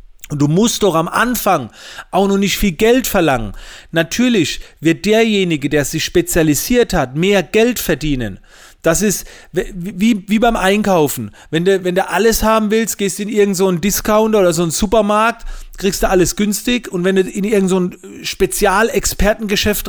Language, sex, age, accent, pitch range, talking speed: German, male, 40-59, German, 170-215 Hz, 170 wpm